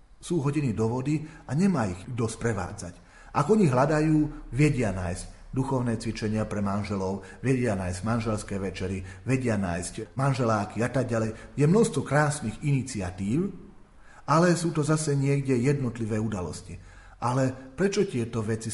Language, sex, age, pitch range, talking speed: Slovak, male, 40-59, 100-135 Hz, 140 wpm